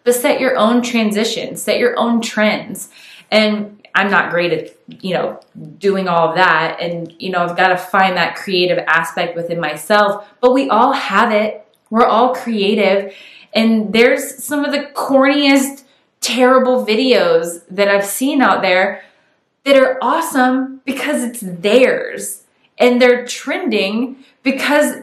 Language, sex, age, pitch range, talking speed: English, female, 20-39, 185-250 Hz, 150 wpm